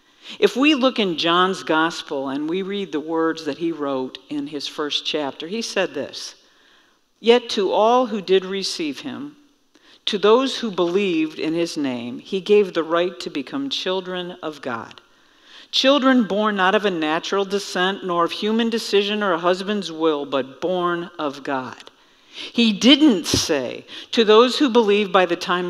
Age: 50-69